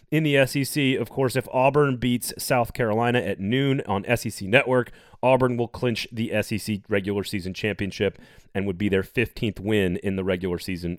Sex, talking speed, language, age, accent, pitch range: male, 180 wpm, English, 30-49, American, 105-150 Hz